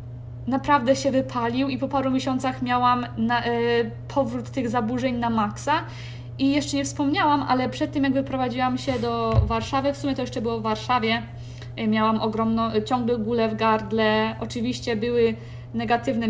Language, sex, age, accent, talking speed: Polish, female, 20-39, native, 160 wpm